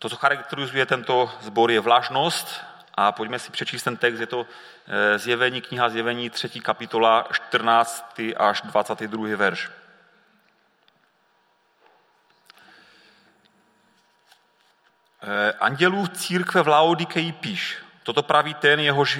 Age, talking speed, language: 30-49, 105 wpm, Czech